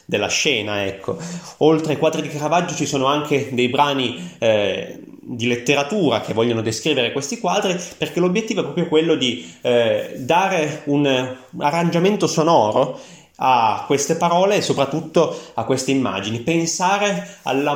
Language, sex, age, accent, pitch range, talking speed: Italian, male, 30-49, native, 120-160 Hz, 140 wpm